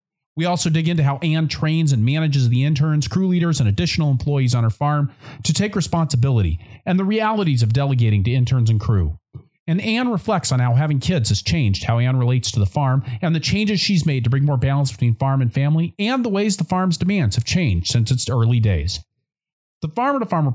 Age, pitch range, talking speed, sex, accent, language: 40-59, 110-165 Hz, 220 wpm, male, American, English